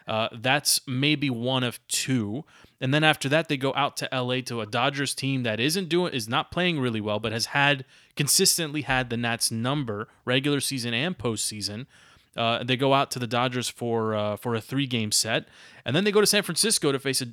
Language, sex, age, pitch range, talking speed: English, male, 20-39, 115-145 Hz, 210 wpm